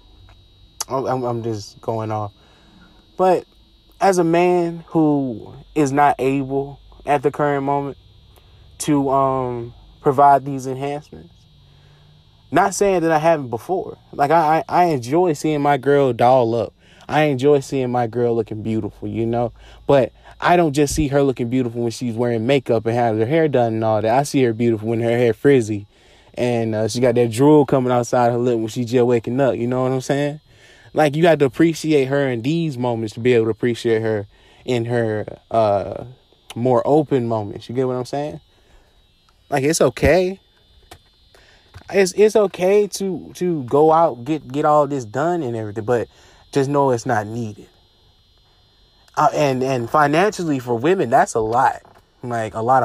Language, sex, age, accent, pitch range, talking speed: English, male, 20-39, American, 110-145 Hz, 175 wpm